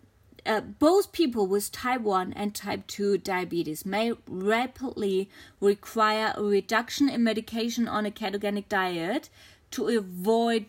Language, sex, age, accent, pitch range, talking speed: English, female, 20-39, German, 205-265 Hz, 130 wpm